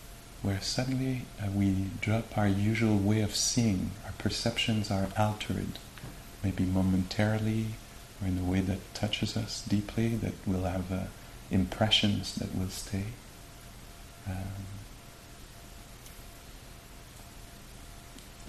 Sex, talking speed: male, 105 wpm